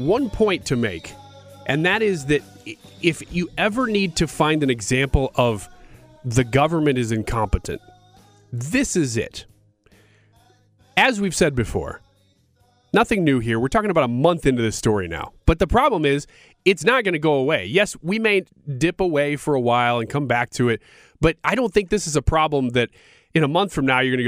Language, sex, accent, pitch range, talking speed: English, male, American, 120-185 Hz, 195 wpm